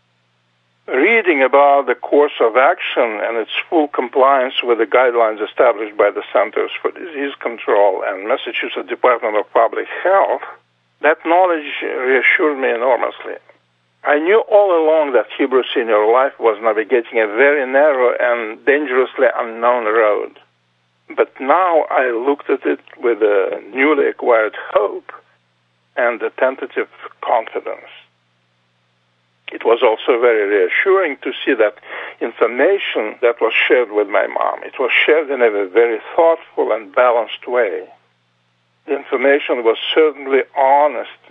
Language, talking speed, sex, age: English, 135 wpm, male, 50-69